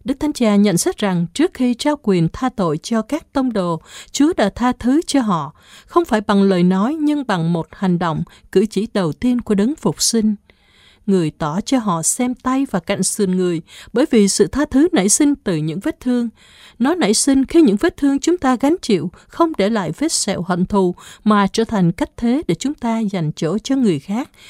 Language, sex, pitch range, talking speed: Vietnamese, female, 190-275 Hz, 225 wpm